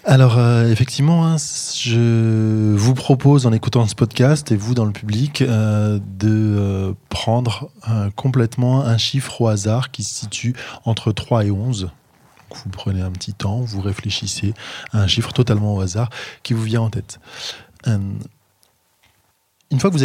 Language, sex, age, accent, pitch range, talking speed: French, male, 20-39, French, 105-130 Hz, 170 wpm